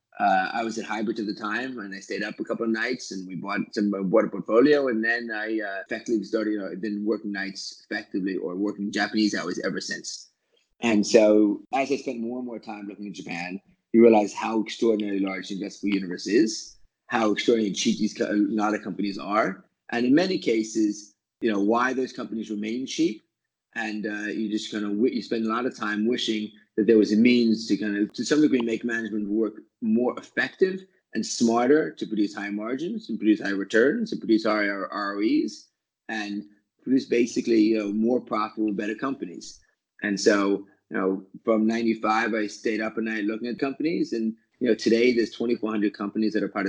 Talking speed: 200 wpm